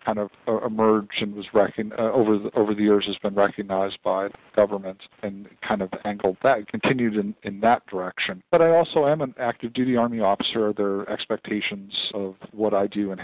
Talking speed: 200 wpm